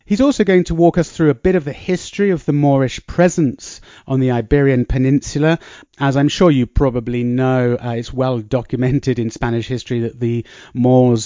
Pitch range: 120-160 Hz